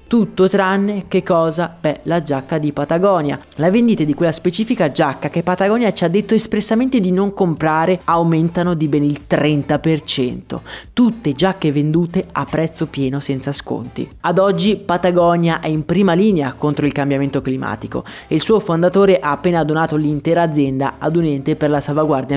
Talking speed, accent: 170 wpm, native